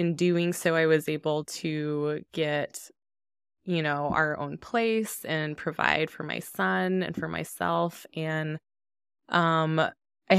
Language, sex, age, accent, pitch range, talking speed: English, female, 20-39, American, 155-180 Hz, 140 wpm